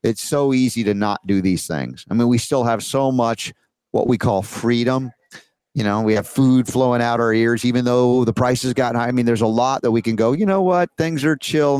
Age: 40-59